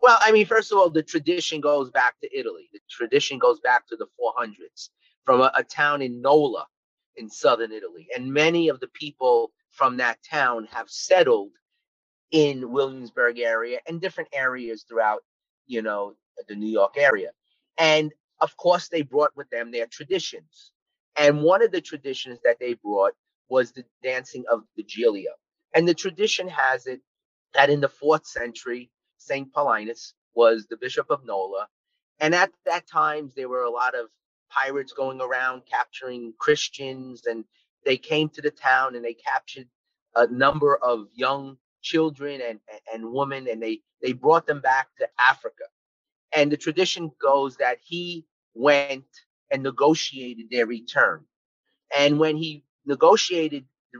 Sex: male